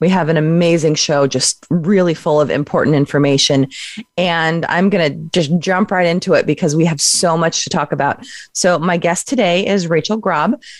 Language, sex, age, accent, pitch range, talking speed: English, female, 30-49, American, 150-195 Hz, 195 wpm